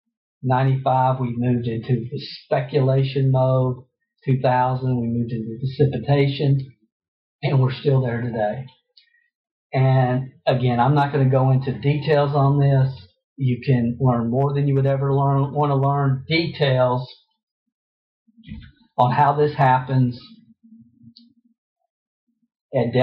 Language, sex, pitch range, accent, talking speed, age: English, male, 120-140 Hz, American, 120 wpm, 50-69